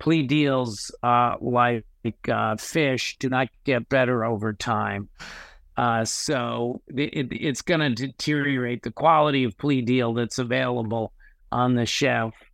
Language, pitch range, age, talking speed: English, 110-150 Hz, 50-69, 145 wpm